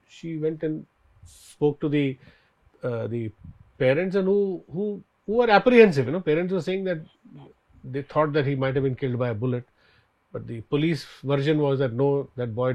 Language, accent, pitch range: Malayalam, native, 115-155 Hz